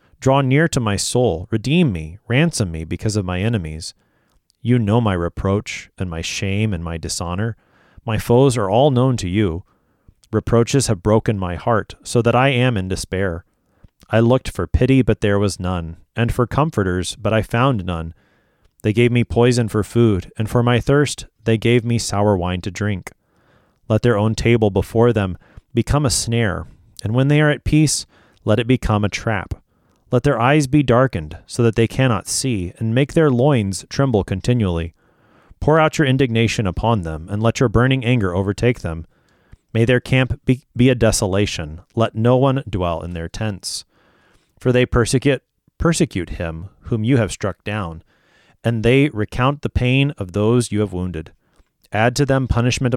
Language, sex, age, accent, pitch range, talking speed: English, male, 30-49, American, 95-125 Hz, 180 wpm